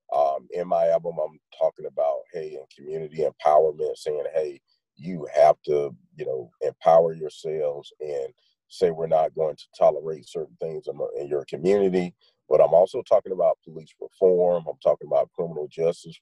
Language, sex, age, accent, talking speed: English, male, 40-59, American, 165 wpm